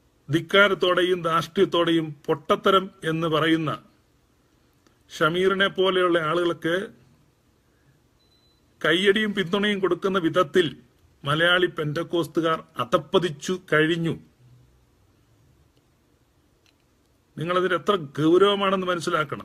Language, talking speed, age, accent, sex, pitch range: Malayalam, 60 wpm, 40-59, native, male, 165-200 Hz